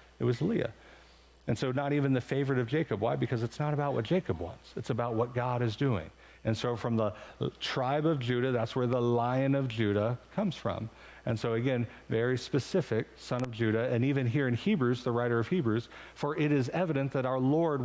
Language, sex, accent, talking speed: English, male, American, 215 wpm